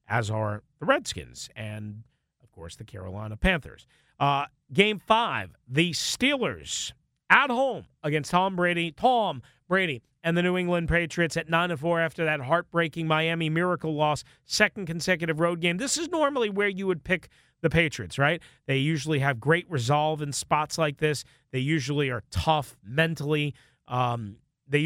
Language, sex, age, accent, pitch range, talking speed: English, male, 40-59, American, 135-175 Hz, 155 wpm